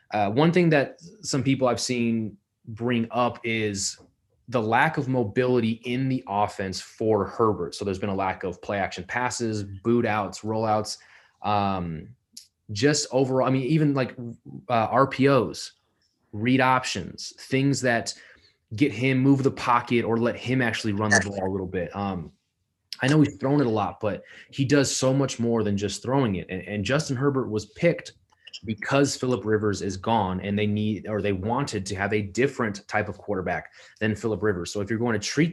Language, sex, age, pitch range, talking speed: English, male, 20-39, 105-130 Hz, 185 wpm